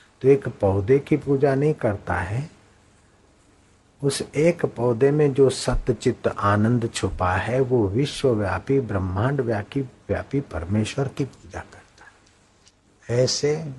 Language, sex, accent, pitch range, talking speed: Hindi, male, native, 105-130 Hz, 120 wpm